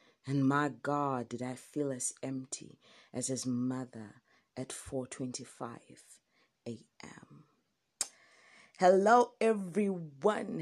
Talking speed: 90 wpm